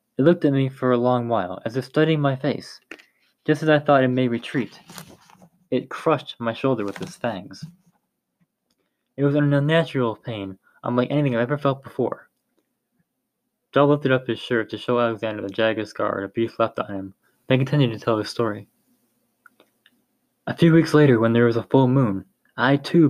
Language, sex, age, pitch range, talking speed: English, male, 20-39, 120-150 Hz, 190 wpm